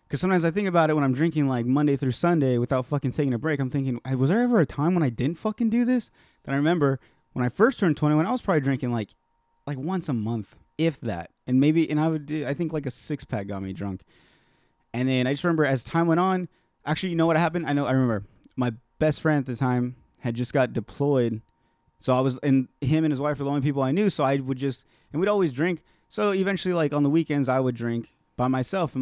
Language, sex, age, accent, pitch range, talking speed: English, male, 20-39, American, 125-155 Hz, 260 wpm